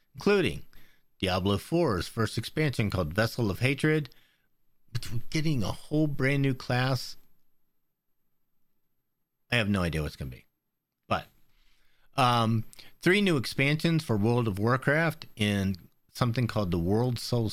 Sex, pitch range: male, 100-135 Hz